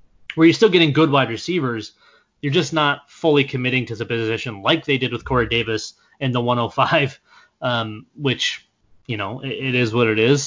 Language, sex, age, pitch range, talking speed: English, male, 20-39, 115-140 Hz, 190 wpm